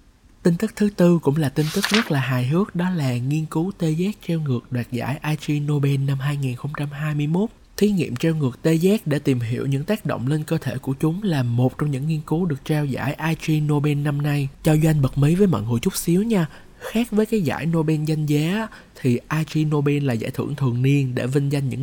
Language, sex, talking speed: Vietnamese, male, 235 wpm